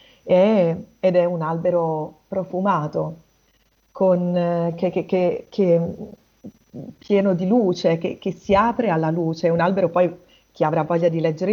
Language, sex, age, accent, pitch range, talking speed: Italian, female, 30-49, native, 165-200 Hz, 120 wpm